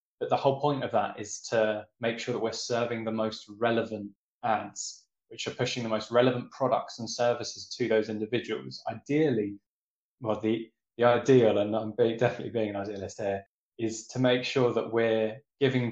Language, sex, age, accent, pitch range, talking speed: English, male, 20-39, British, 105-125 Hz, 180 wpm